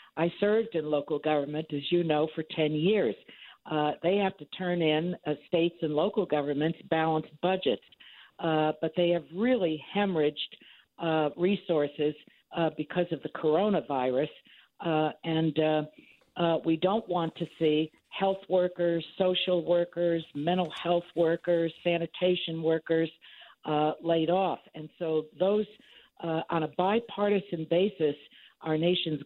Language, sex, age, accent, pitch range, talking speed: English, female, 60-79, American, 155-180 Hz, 140 wpm